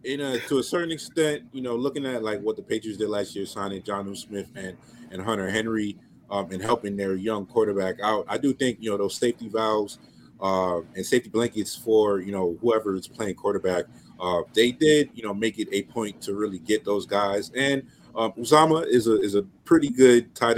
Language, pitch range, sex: English, 100-130 Hz, male